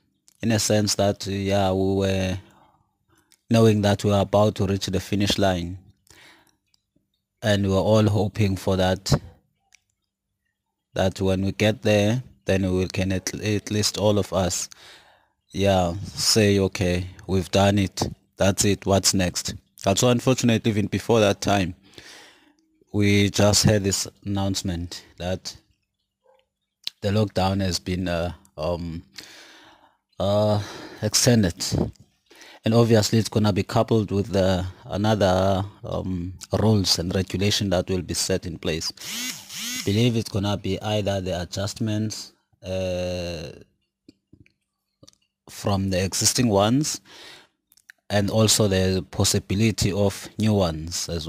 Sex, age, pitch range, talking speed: male, 30-49, 95-105 Hz, 130 wpm